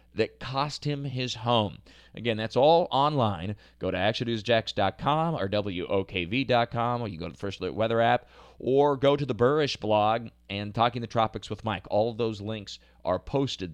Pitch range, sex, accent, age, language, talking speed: 105-140 Hz, male, American, 30-49, English, 185 wpm